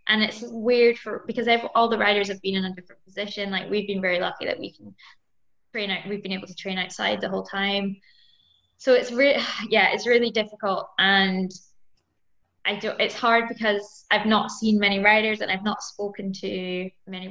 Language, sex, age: English, female, 10-29